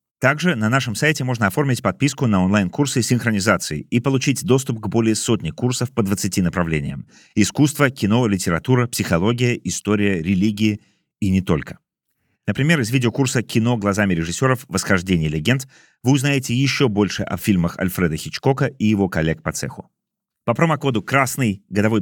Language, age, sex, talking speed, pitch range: Russian, 30-49, male, 145 wpm, 90-130 Hz